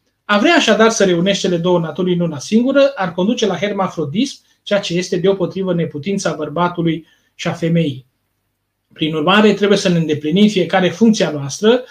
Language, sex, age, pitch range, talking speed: Romanian, male, 30-49, 170-205 Hz, 160 wpm